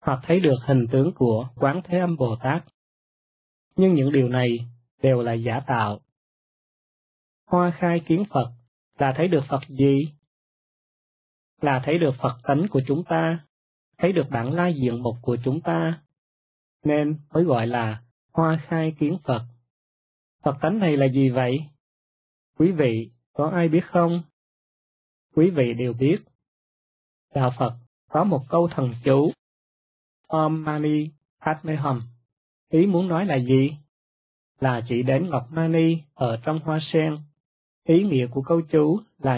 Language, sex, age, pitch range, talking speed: Vietnamese, male, 20-39, 120-165 Hz, 150 wpm